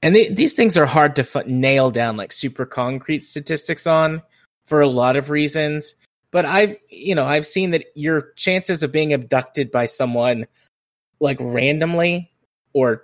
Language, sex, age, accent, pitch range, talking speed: English, male, 20-39, American, 125-160 Hz, 160 wpm